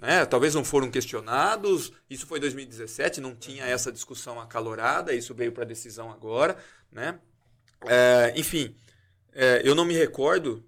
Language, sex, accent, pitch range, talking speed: Portuguese, male, Brazilian, 115-150 Hz, 150 wpm